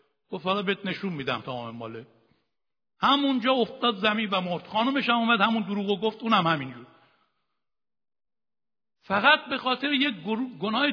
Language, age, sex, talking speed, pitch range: Persian, 60-79, male, 135 wpm, 200-260 Hz